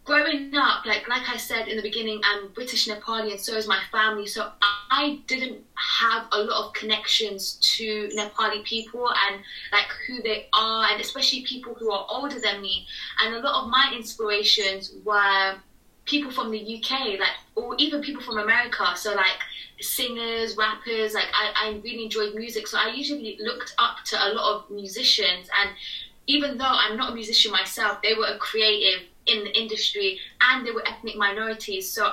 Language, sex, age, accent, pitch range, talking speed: English, female, 20-39, British, 210-235 Hz, 185 wpm